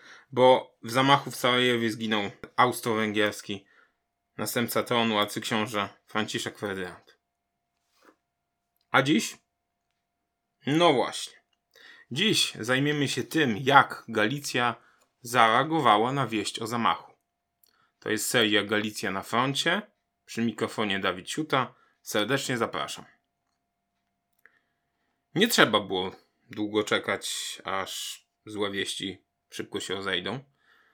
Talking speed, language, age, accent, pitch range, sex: 95 wpm, Polish, 20-39, native, 100-125 Hz, male